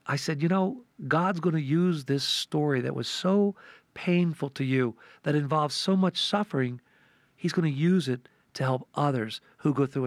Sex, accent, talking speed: male, American, 190 wpm